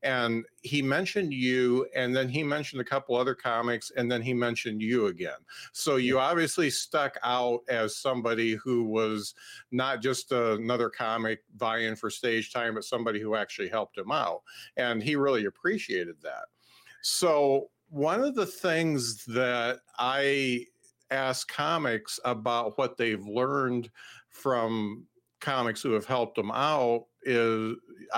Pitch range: 115-135 Hz